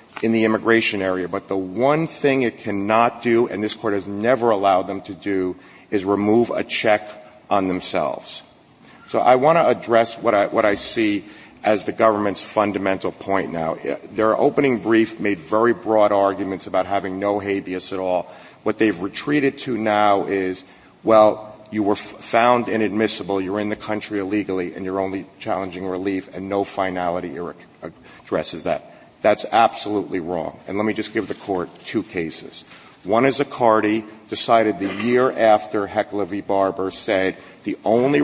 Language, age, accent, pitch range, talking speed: English, 40-59, American, 100-115 Hz, 165 wpm